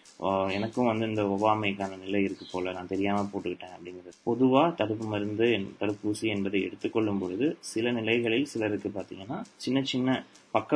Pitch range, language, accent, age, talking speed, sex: 95-115 Hz, Tamil, native, 30-49, 140 wpm, male